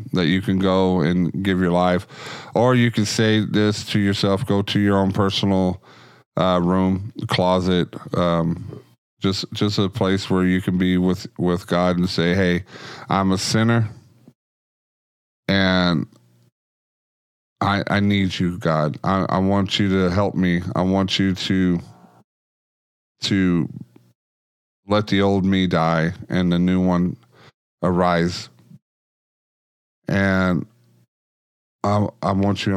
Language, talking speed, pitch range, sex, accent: English, 135 wpm, 90-110 Hz, male, American